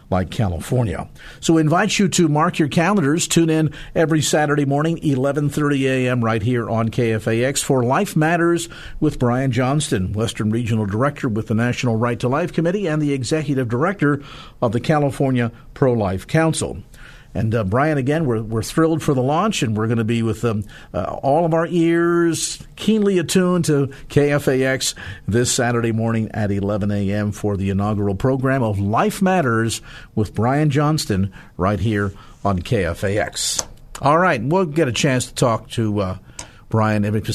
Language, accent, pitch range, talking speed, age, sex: English, American, 110-155 Hz, 170 wpm, 50-69, male